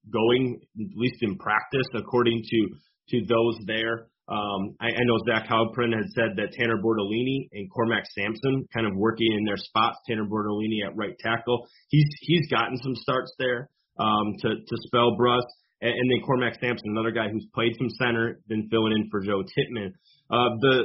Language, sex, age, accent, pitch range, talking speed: English, male, 30-49, American, 110-125 Hz, 185 wpm